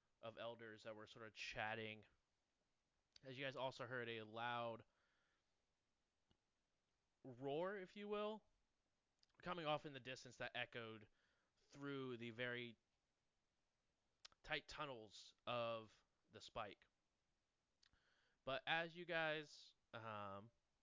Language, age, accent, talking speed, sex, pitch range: English, 20-39, American, 110 wpm, male, 105-130 Hz